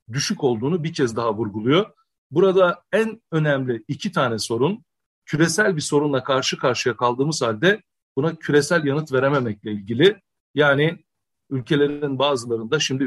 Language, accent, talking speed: Turkish, native, 130 wpm